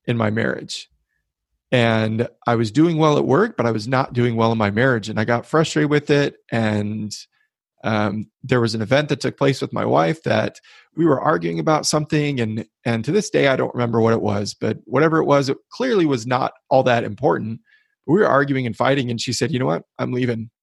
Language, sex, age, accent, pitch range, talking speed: English, male, 30-49, American, 115-140 Hz, 225 wpm